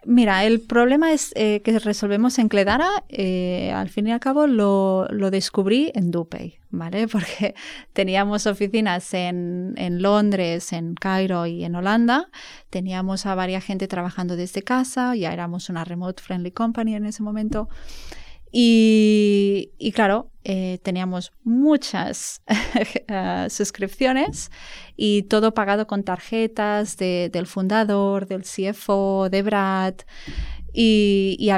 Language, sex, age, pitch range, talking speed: Spanish, female, 20-39, 190-230 Hz, 135 wpm